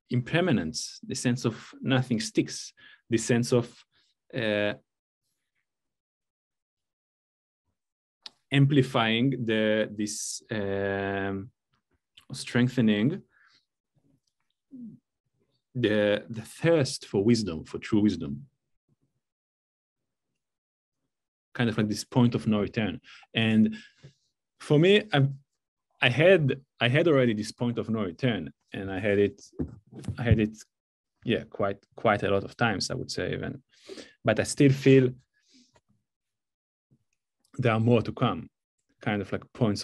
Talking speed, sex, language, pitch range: 115 wpm, male, English, 105-130 Hz